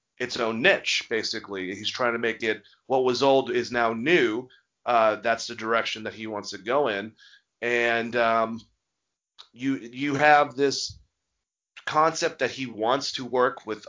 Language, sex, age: English, male, 30-49